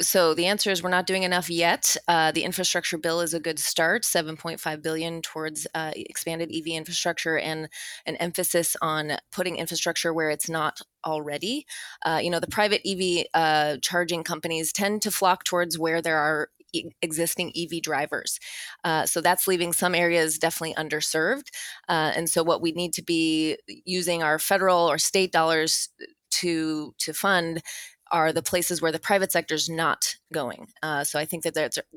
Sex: female